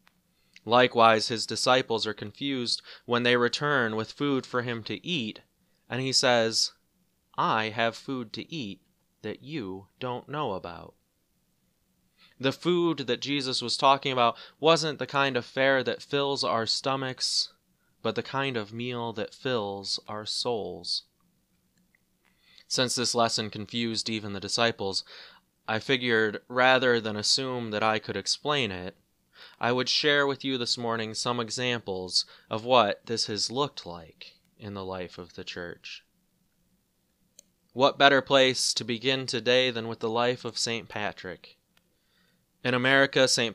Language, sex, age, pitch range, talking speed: English, male, 20-39, 110-130 Hz, 145 wpm